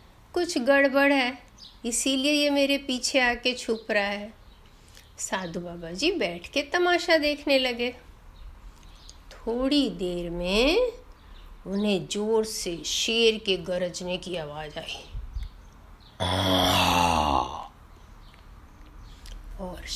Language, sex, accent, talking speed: Hindi, female, native, 95 wpm